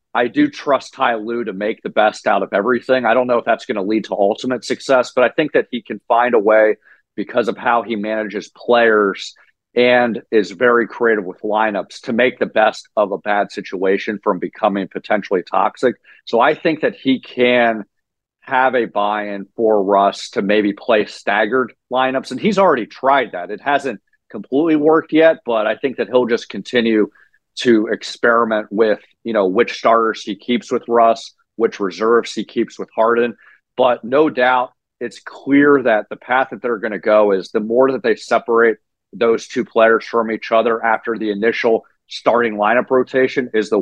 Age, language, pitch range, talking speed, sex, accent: 50-69, English, 110-125 Hz, 190 wpm, male, American